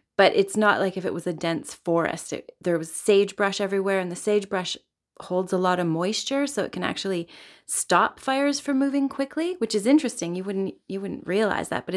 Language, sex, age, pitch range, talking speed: English, female, 30-49, 185-215 Hz, 210 wpm